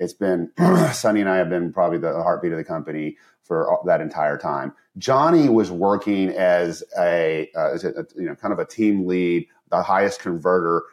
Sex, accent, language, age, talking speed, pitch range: male, American, English, 30-49, 190 wpm, 90-120 Hz